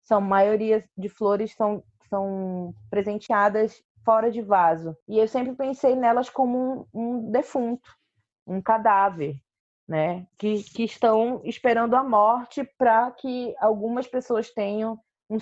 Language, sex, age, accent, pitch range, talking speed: Portuguese, female, 20-39, Brazilian, 195-245 Hz, 135 wpm